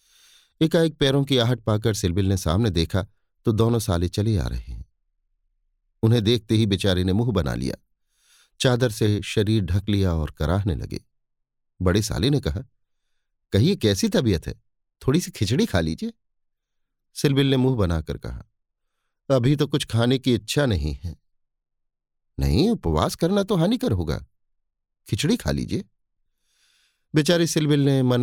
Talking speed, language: 155 wpm, Hindi